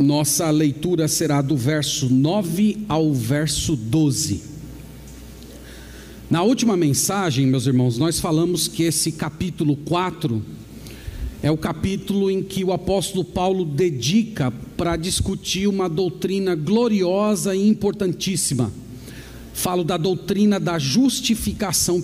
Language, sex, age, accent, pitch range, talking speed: Portuguese, male, 50-69, Brazilian, 155-220 Hz, 110 wpm